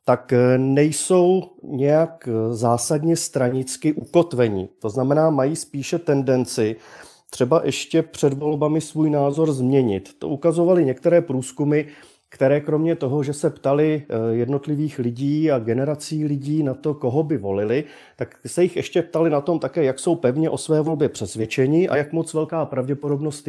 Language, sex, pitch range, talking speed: Czech, male, 125-155 Hz, 150 wpm